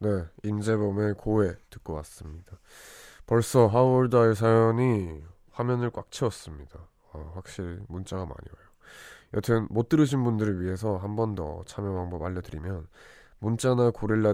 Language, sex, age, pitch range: Korean, male, 20-39, 90-110 Hz